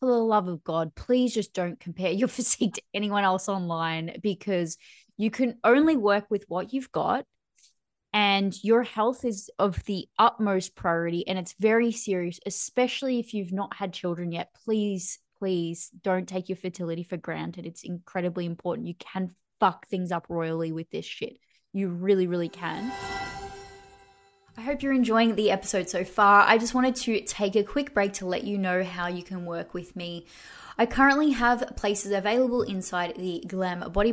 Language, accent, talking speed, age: English, Australian, 180 wpm, 20-39